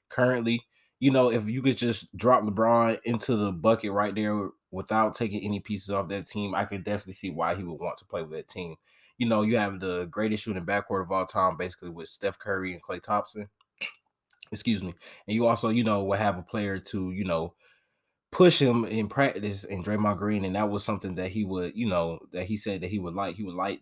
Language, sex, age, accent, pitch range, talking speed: English, male, 20-39, American, 95-110 Hz, 230 wpm